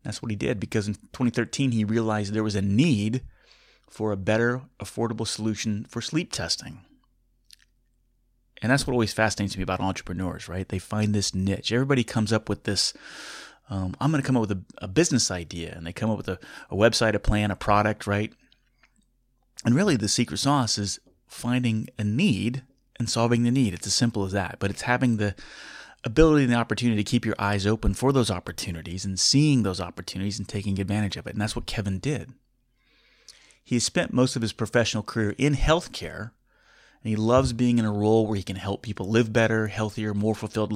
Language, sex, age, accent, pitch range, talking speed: English, male, 30-49, American, 100-120 Hz, 205 wpm